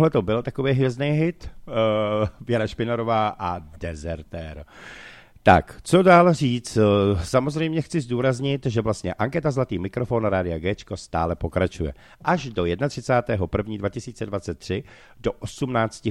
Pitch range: 95-140 Hz